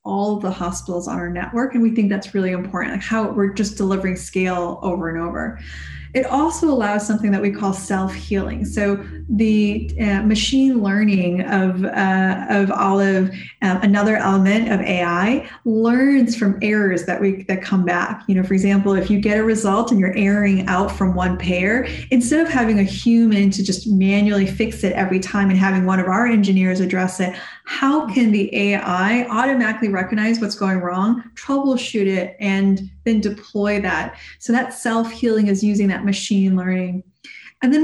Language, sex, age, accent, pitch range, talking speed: English, female, 30-49, American, 190-230 Hz, 180 wpm